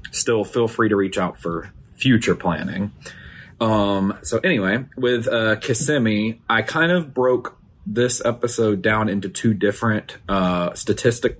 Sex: male